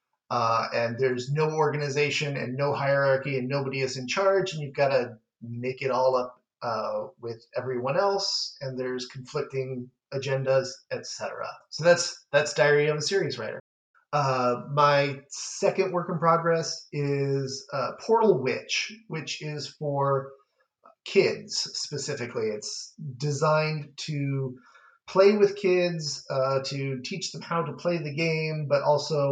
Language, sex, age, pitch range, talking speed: English, male, 30-49, 130-165 Hz, 145 wpm